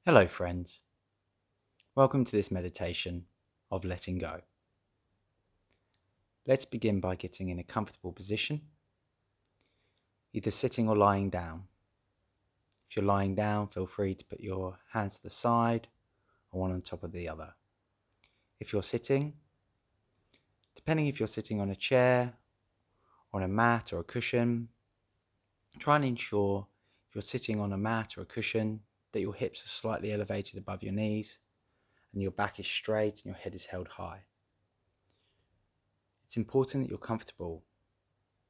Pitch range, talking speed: 95-110 Hz, 150 wpm